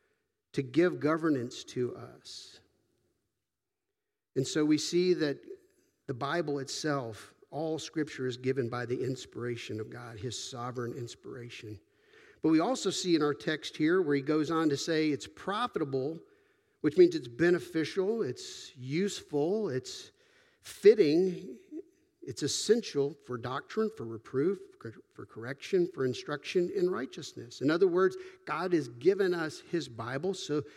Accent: American